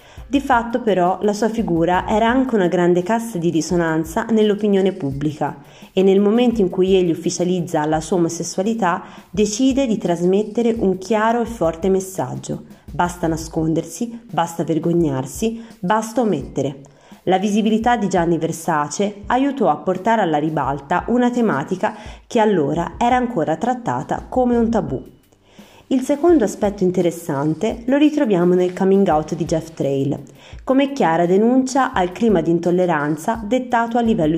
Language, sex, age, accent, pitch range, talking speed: Italian, female, 30-49, native, 165-225 Hz, 140 wpm